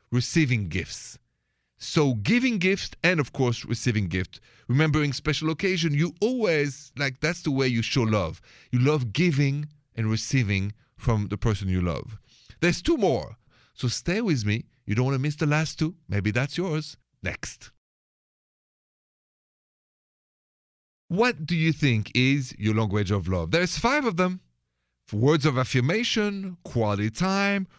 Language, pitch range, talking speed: English, 110-155 Hz, 150 wpm